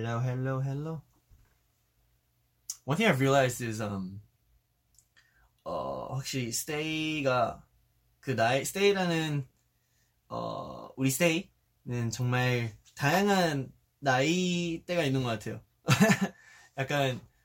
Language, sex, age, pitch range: Korean, male, 20-39, 115-145 Hz